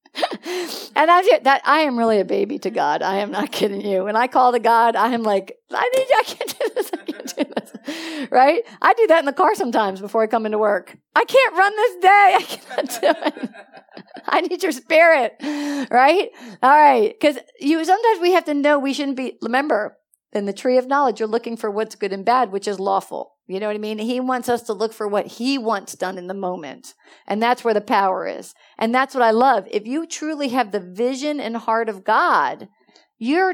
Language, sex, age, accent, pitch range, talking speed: English, female, 50-69, American, 215-310 Hz, 235 wpm